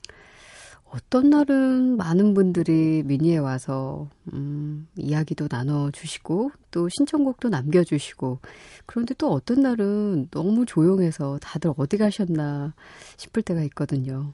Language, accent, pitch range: Korean, native, 145-200 Hz